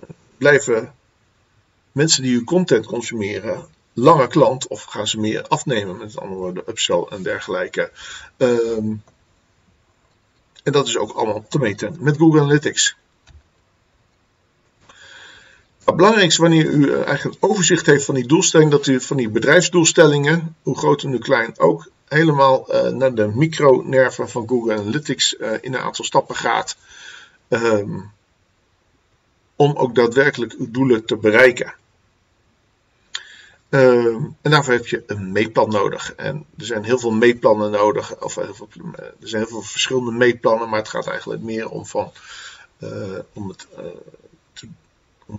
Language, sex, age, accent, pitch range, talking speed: Dutch, male, 50-69, Dutch, 105-145 Hz, 145 wpm